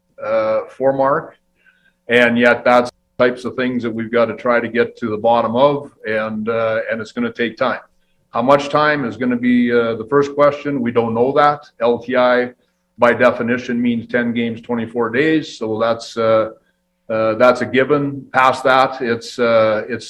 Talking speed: 190 wpm